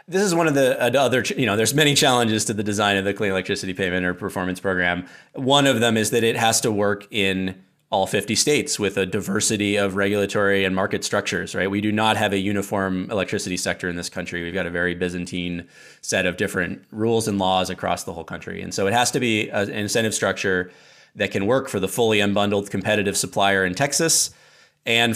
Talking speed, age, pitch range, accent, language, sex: 215 wpm, 30-49, 95-110 Hz, American, English, male